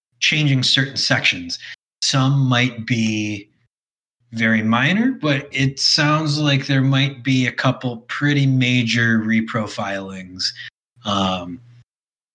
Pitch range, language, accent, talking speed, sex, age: 110-130 Hz, English, American, 100 wpm, male, 20-39